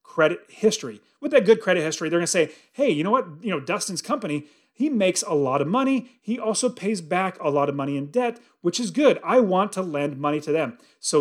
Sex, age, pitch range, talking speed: male, 30-49, 150-215 Hz, 245 wpm